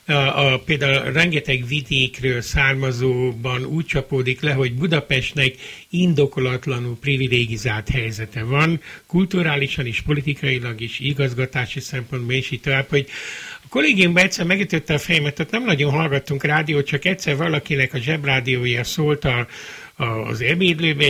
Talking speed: 120 wpm